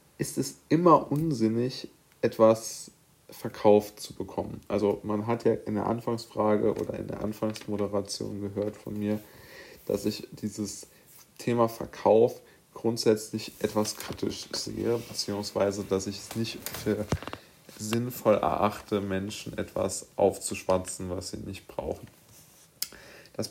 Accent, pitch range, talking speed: German, 100-110 Hz, 120 wpm